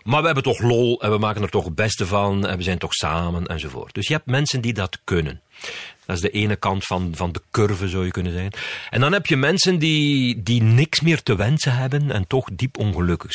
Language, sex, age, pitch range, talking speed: Dutch, male, 50-69, 105-140 Hz, 245 wpm